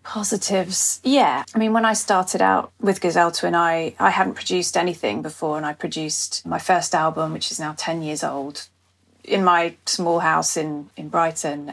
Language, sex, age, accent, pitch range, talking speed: English, female, 30-49, British, 160-195 Hz, 185 wpm